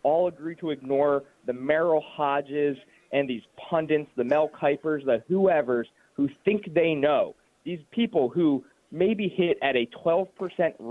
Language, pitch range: English, 135-175 Hz